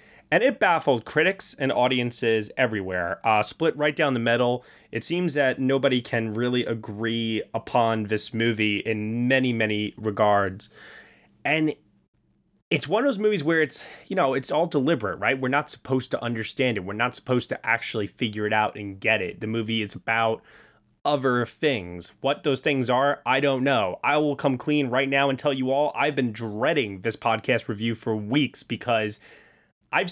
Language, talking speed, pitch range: English, 180 wpm, 115-150 Hz